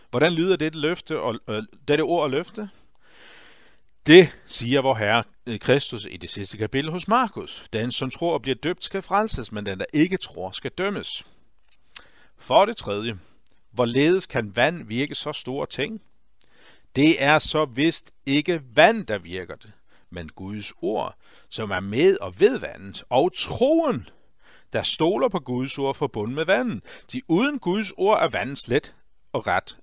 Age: 60-79